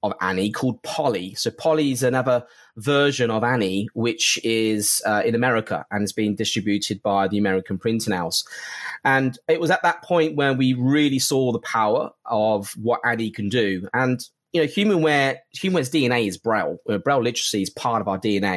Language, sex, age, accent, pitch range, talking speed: English, male, 20-39, British, 105-135 Hz, 185 wpm